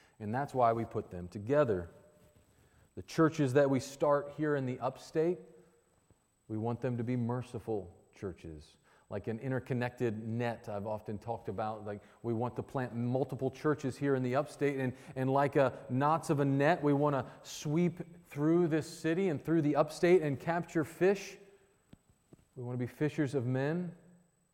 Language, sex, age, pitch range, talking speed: English, male, 40-59, 130-160 Hz, 175 wpm